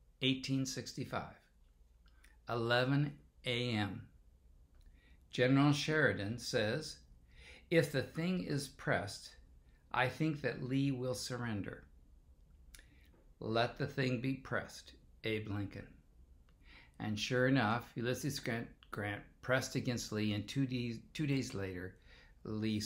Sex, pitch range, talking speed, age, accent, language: male, 80-125 Hz, 105 wpm, 60-79, American, English